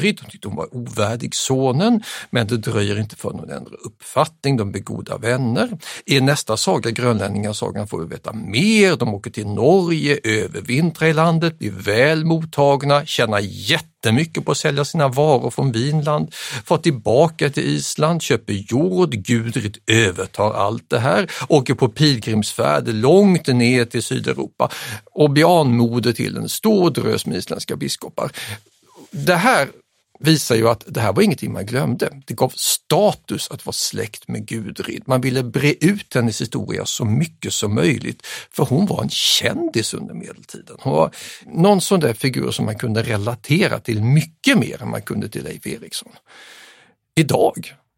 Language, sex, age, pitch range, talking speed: Swedish, male, 60-79, 115-160 Hz, 160 wpm